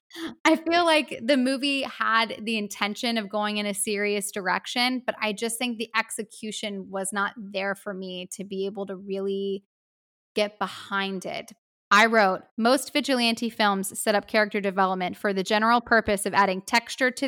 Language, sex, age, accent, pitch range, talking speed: English, female, 10-29, American, 200-245 Hz, 175 wpm